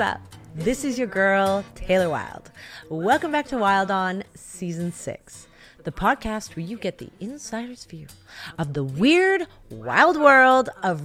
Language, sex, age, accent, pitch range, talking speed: English, female, 30-49, American, 165-240 Hz, 150 wpm